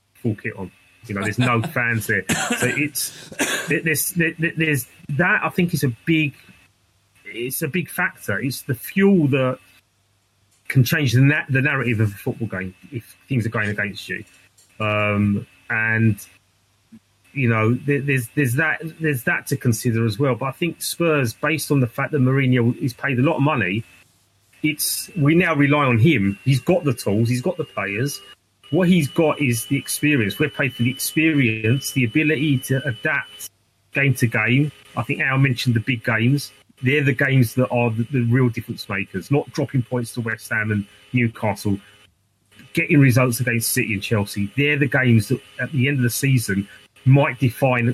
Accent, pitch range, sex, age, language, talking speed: British, 105-145 Hz, male, 30-49, English, 185 wpm